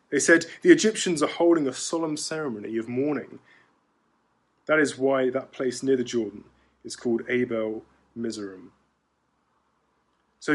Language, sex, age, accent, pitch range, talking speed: English, male, 20-39, British, 125-170 Hz, 135 wpm